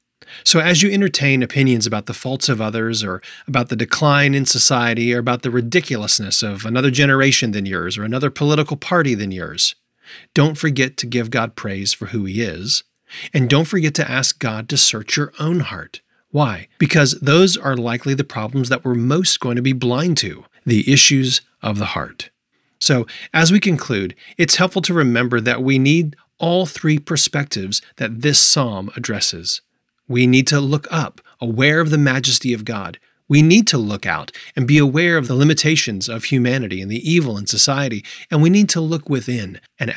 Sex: male